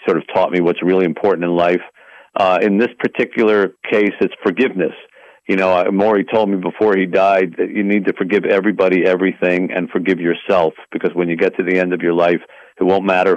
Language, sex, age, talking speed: English, male, 50-69, 210 wpm